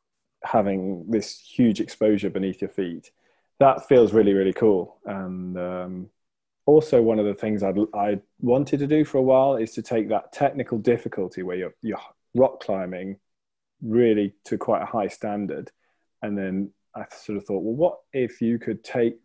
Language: English